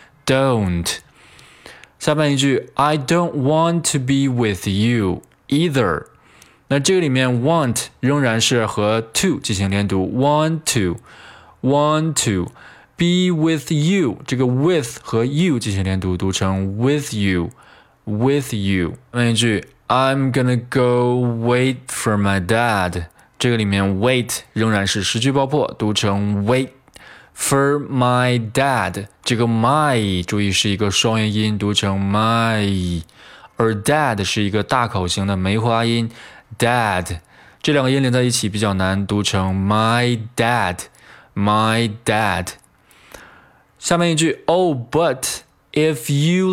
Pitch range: 100-135 Hz